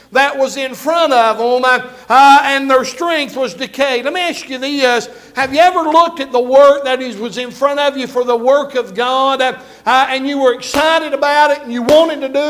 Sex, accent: male, American